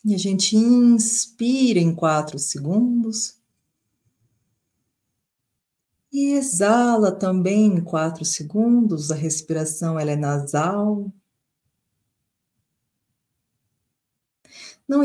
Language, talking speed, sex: Portuguese, 75 wpm, female